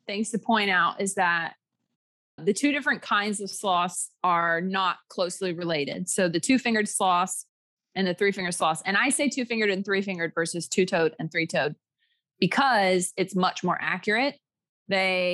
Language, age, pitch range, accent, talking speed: English, 20-39, 170-205 Hz, American, 155 wpm